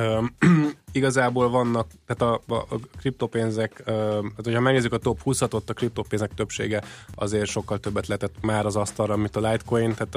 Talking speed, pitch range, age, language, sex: 165 wpm, 105-120 Hz, 20-39, Hungarian, male